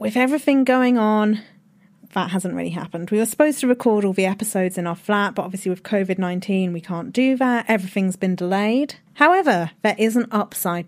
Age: 30-49